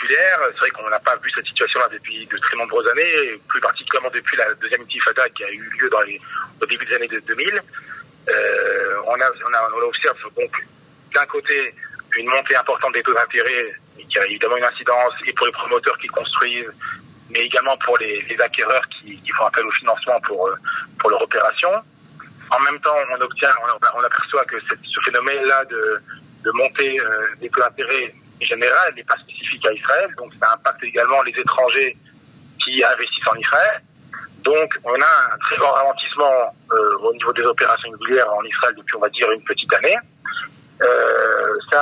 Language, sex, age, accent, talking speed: French, male, 40-59, French, 190 wpm